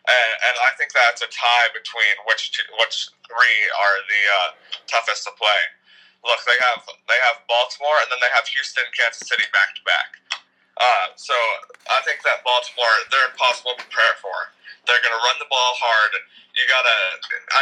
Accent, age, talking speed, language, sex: American, 20-39, 185 wpm, English, male